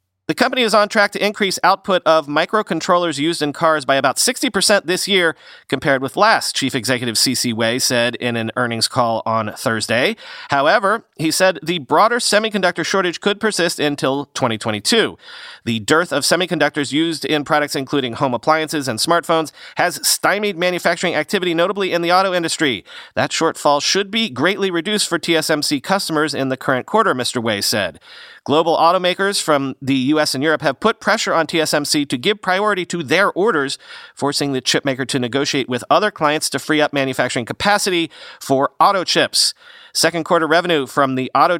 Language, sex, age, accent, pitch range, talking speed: English, male, 40-59, American, 130-180 Hz, 175 wpm